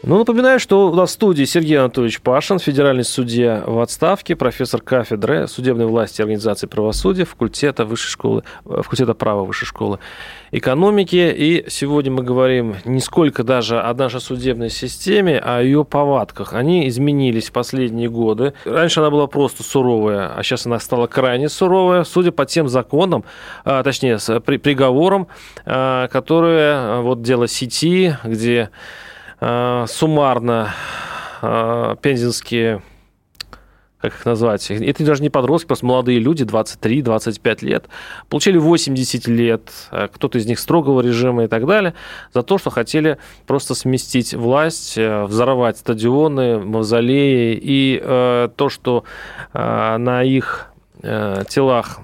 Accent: native